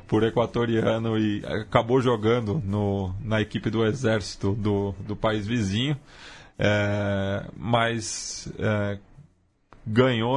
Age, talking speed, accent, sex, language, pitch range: 20-39, 105 wpm, Brazilian, male, Portuguese, 105-125 Hz